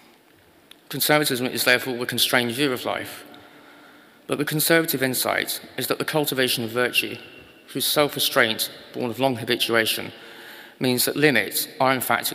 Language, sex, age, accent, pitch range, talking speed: English, male, 30-49, British, 115-135 Hz, 145 wpm